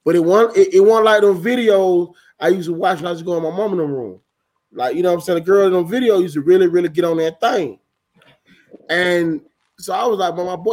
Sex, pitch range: male, 155-240 Hz